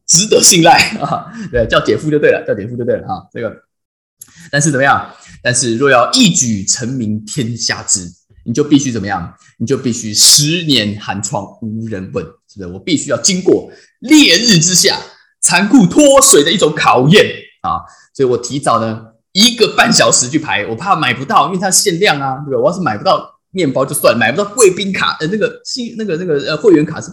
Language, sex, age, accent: Chinese, male, 20-39, native